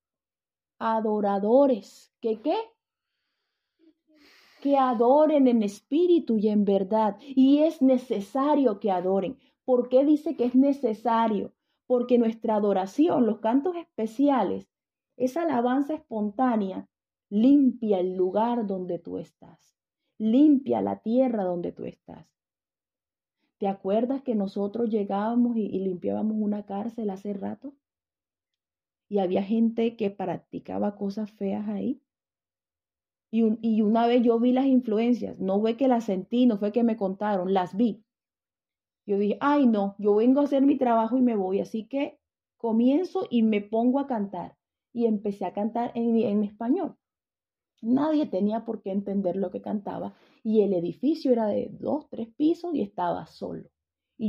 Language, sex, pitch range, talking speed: English, female, 200-260 Hz, 145 wpm